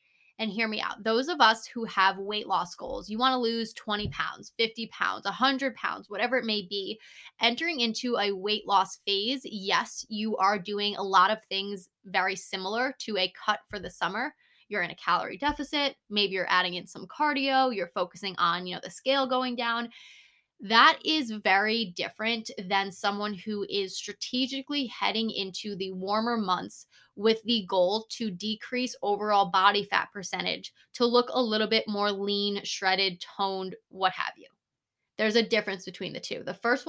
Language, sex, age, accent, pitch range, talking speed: English, female, 20-39, American, 195-245 Hz, 180 wpm